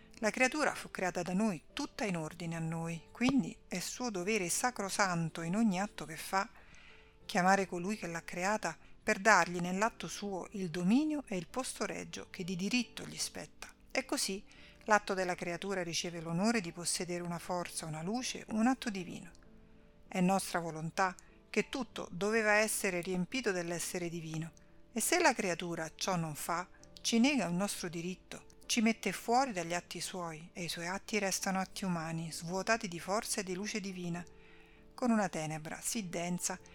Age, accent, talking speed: 50-69, native, 170 wpm